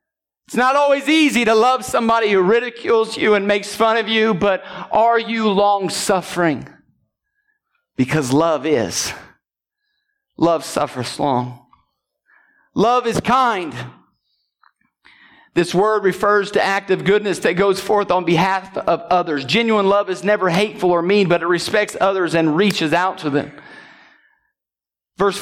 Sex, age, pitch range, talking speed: male, 40-59, 185-230 Hz, 135 wpm